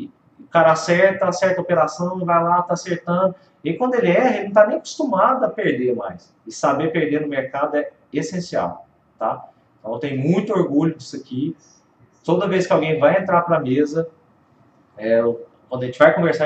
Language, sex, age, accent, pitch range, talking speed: Portuguese, male, 30-49, Brazilian, 135-180 Hz, 190 wpm